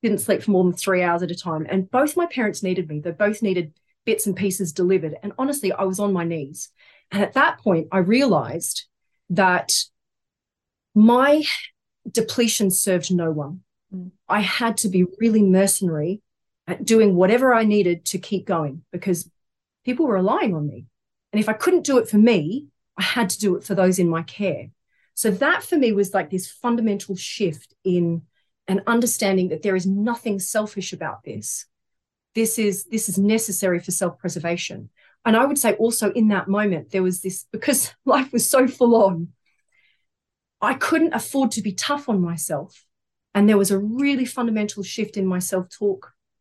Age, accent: 40-59, Australian